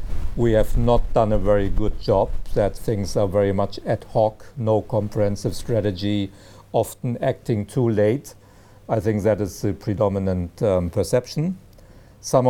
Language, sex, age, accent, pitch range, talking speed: English, male, 50-69, German, 100-130 Hz, 145 wpm